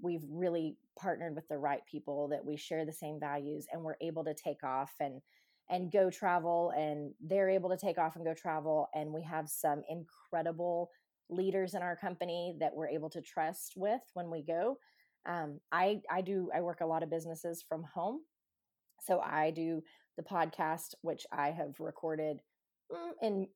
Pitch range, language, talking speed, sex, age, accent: 155-195 Hz, English, 185 wpm, female, 30-49, American